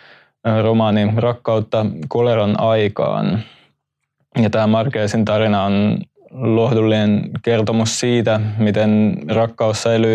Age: 20-39